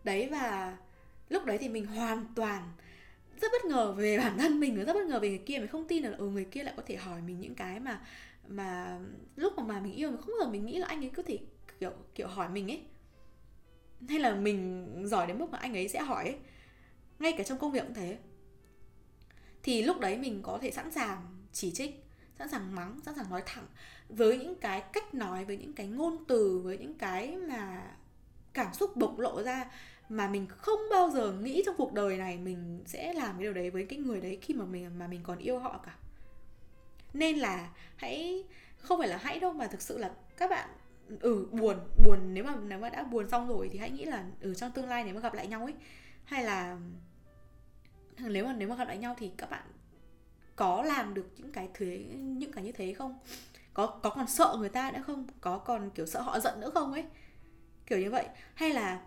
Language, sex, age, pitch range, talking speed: Vietnamese, female, 10-29, 190-285 Hz, 230 wpm